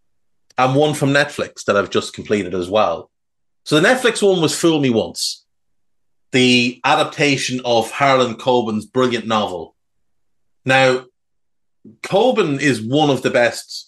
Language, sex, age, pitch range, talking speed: English, male, 30-49, 120-145 Hz, 140 wpm